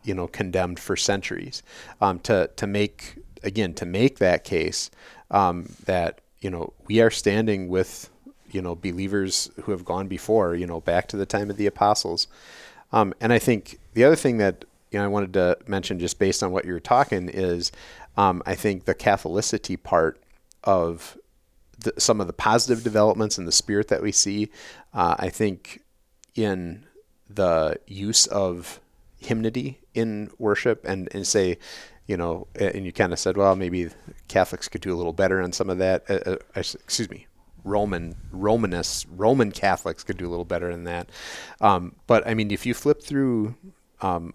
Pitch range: 90-105 Hz